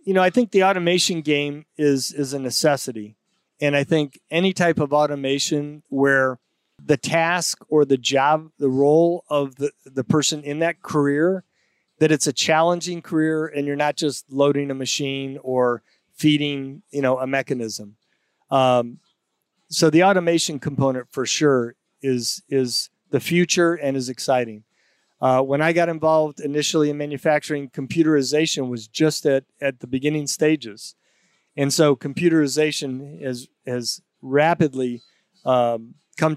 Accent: American